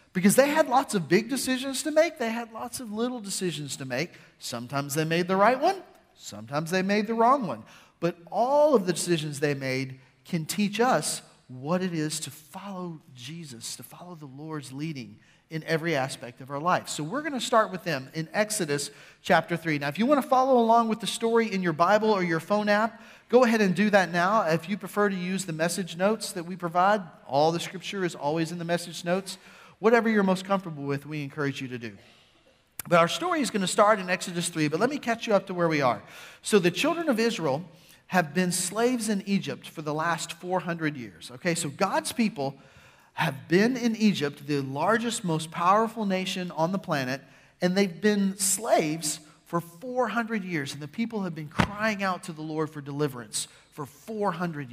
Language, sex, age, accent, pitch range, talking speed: English, male, 40-59, American, 155-210 Hz, 210 wpm